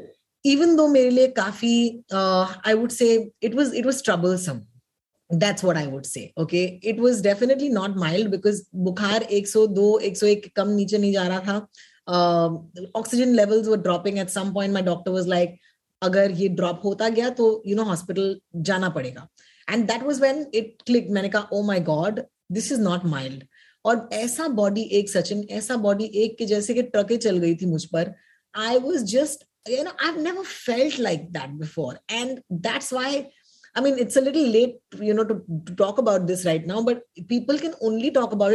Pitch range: 185-235 Hz